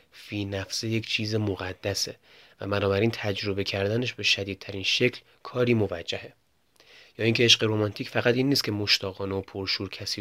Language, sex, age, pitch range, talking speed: Persian, male, 30-49, 100-115 Hz, 155 wpm